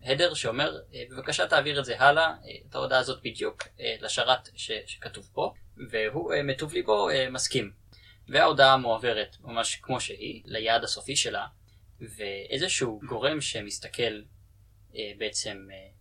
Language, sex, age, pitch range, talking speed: Hebrew, male, 20-39, 105-135 Hz, 90 wpm